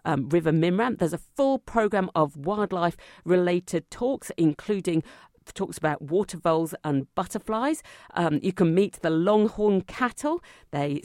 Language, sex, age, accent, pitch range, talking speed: English, female, 50-69, British, 145-200 Hz, 140 wpm